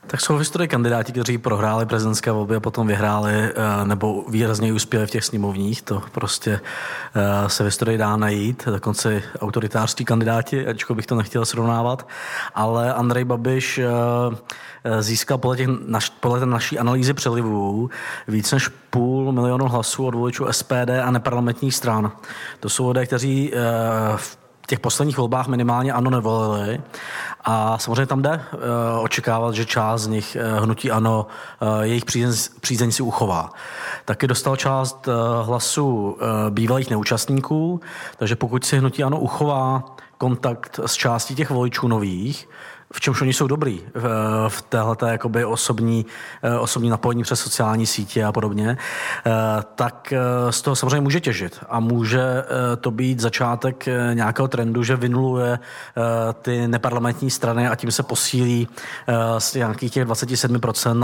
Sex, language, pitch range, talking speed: male, Czech, 110-130 Hz, 140 wpm